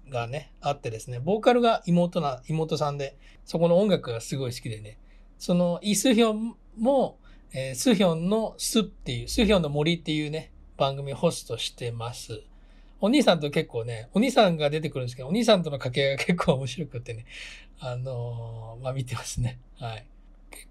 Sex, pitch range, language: male, 130-210 Hz, Japanese